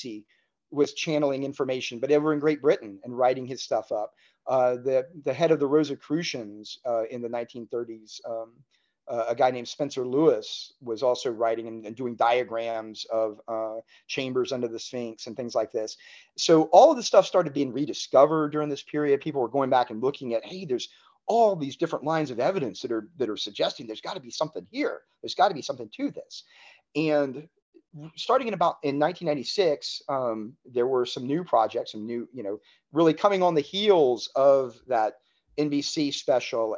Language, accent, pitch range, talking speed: English, American, 120-155 Hz, 190 wpm